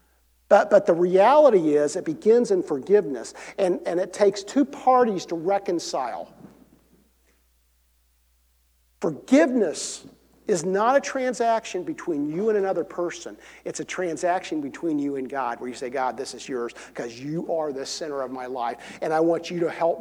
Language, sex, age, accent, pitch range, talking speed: English, male, 50-69, American, 155-220 Hz, 165 wpm